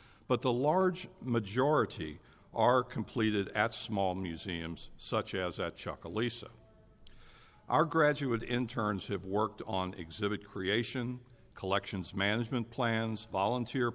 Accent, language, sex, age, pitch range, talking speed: American, English, male, 60-79, 95-120 Hz, 110 wpm